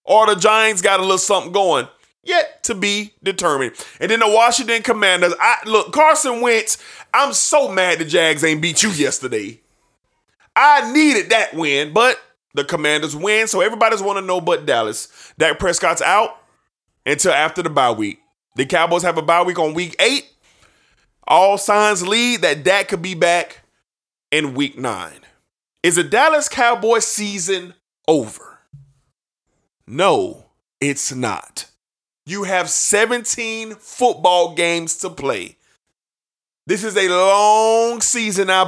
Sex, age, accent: male, 20-39, American